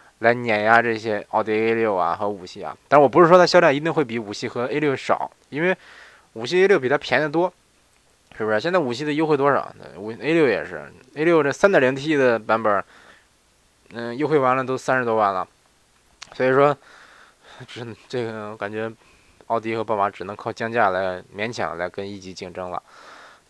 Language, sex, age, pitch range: Chinese, male, 20-39, 110-150 Hz